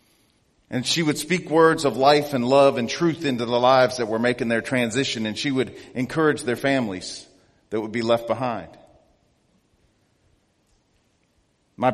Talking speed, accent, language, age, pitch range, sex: 155 wpm, American, English, 40-59, 120-145 Hz, male